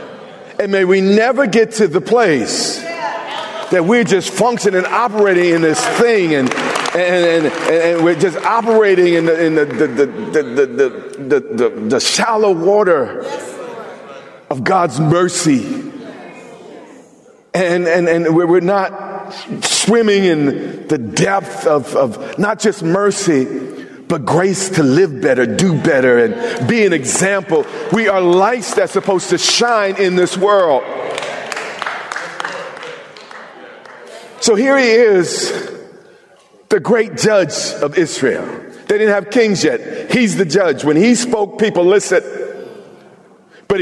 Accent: American